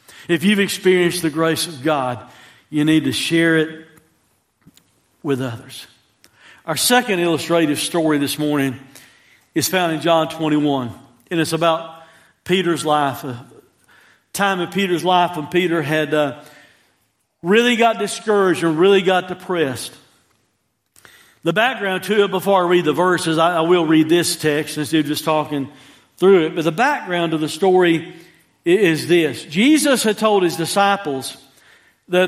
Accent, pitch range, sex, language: American, 155-230 Hz, male, English